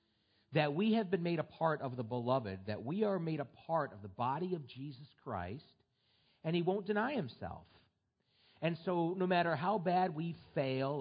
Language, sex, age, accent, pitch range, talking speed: English, male, 40-59, American, 130-185 Hz, 190 wpm